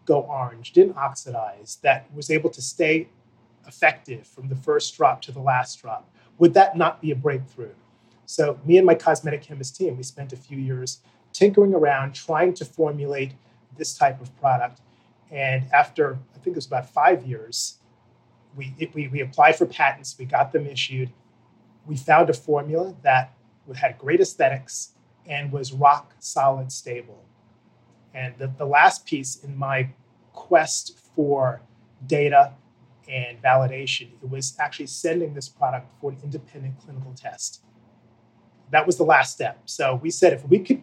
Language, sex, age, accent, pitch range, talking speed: English, male, 30-49, American, 125-160 Hz, 160 wpm